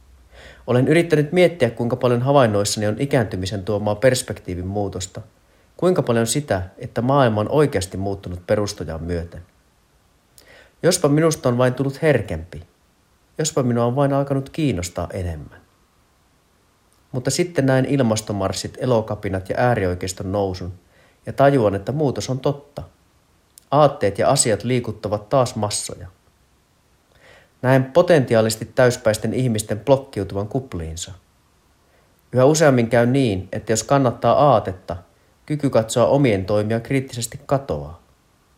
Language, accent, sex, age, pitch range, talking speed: Finnish, native, male, 30-49, 90-130 Hz, 115 wpm